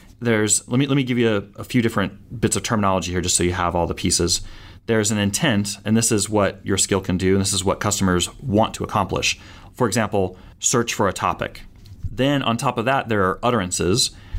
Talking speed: 230 wpm